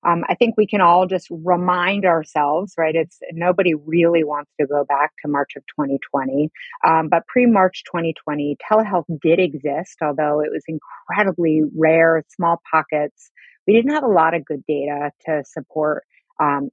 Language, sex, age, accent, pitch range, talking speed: English, female, 30-49, American, 150-180 Hz, 165 wpm